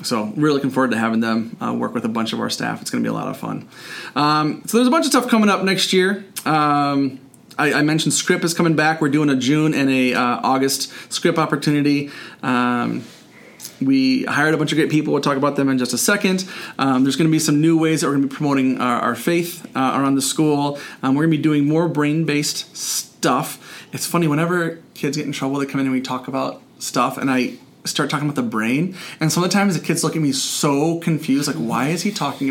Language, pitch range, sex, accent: English, 135-170 Hz, male, American